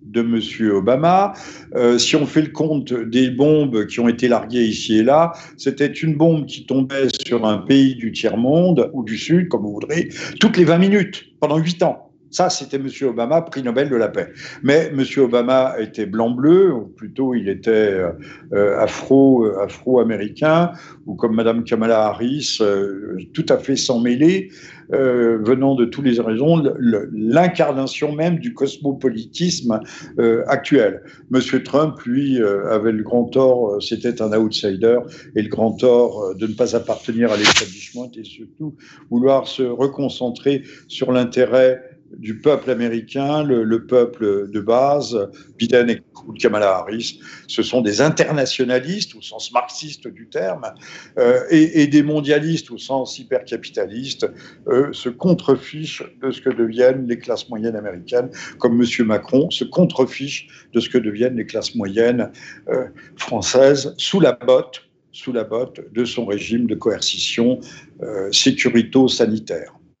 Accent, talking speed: French, 150 wpm